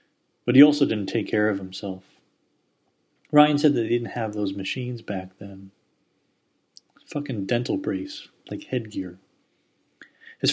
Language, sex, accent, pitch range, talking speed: English, male, American, 100-120 Hz, 135 wpm